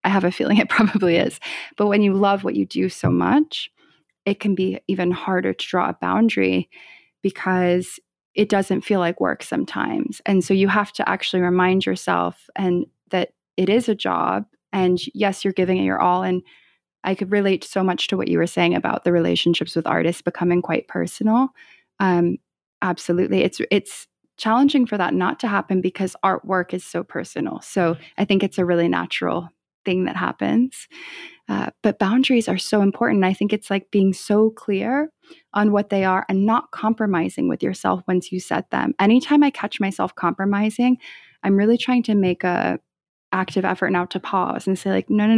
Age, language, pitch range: 20-39, English, 180-215 Hz